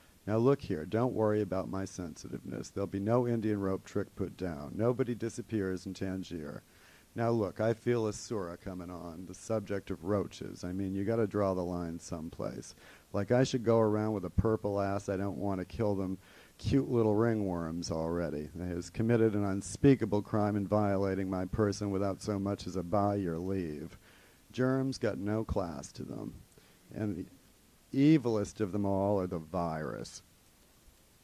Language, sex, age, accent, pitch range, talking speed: English, male, 50-69, American, 90-110 Hz, 175 wpm